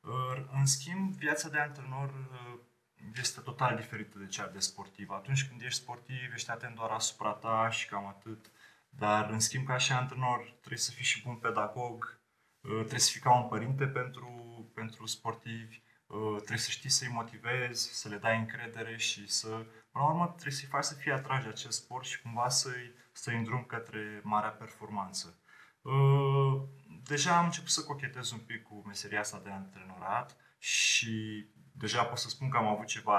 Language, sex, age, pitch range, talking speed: Romanian, male, 20-39, 110-135 Hz, 175 wpm